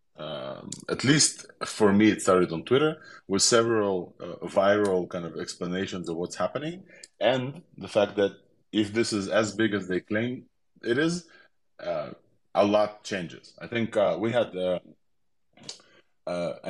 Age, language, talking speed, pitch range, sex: 20-39, English, 160 wpm, 90-115 Hz, male